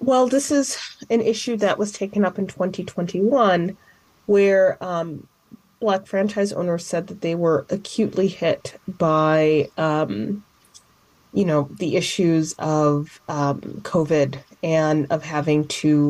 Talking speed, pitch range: 130 wpm, 150-190 Hz